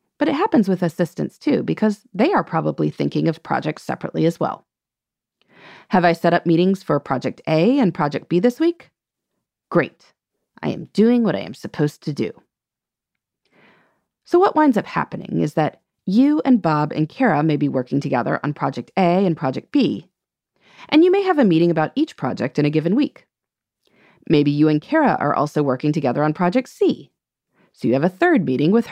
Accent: American